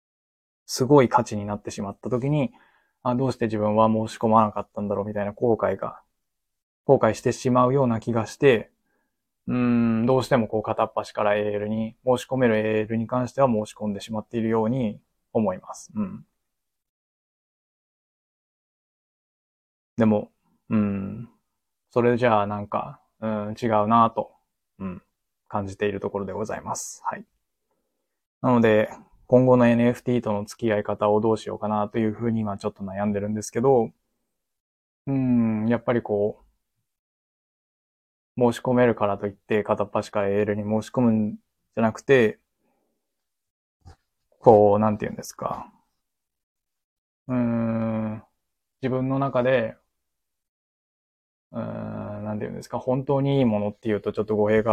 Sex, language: male, Japanese